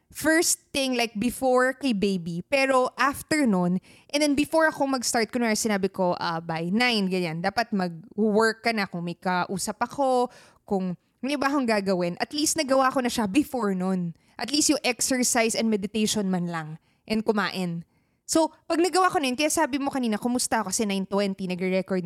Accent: native